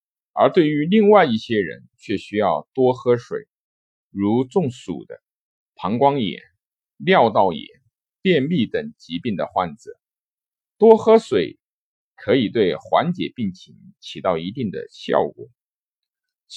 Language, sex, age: Chinese, male, 50-69